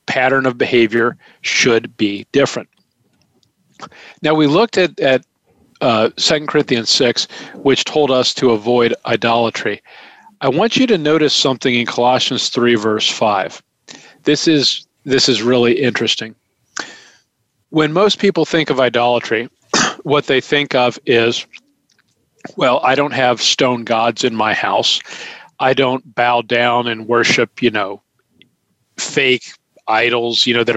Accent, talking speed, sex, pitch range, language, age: American, 140 wpm, male, 120-165 Hz, English, 40-59